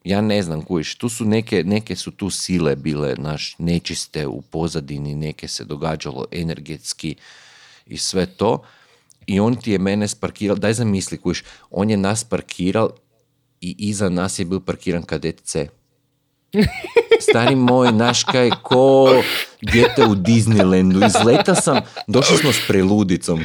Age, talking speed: 40-59, 150 wpm